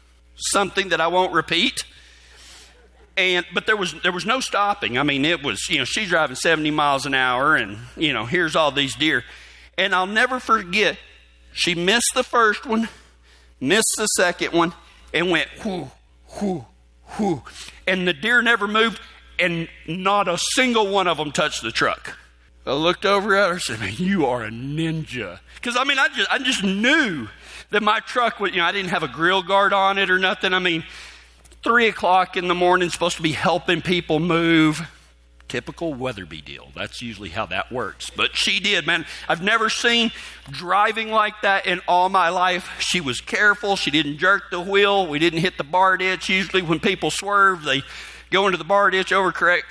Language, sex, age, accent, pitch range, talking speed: English, male, 40-59, American, 130-200 Hz, 195 wpm